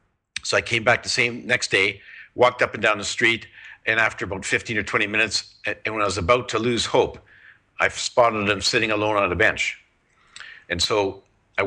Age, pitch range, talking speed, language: 50-69, 100-120 Hz, 205 wpm, English